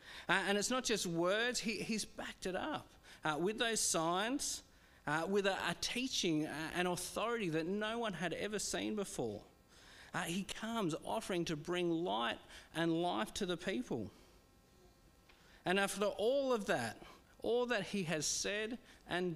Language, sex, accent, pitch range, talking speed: English, male, Australian, 155-210 Hz, 160 wpm